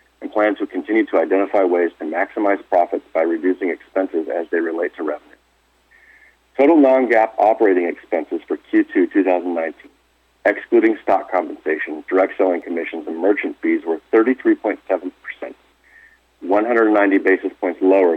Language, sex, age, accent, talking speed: English, male, 40-59, American, 130 wpm